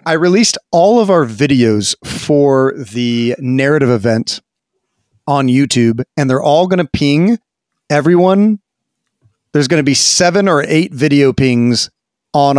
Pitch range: 115-145 Hz